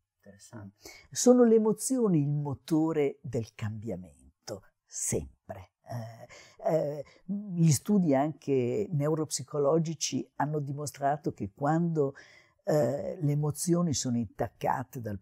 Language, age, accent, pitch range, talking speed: Italian, 50-69, native, 110-165 Hz, 95 wpm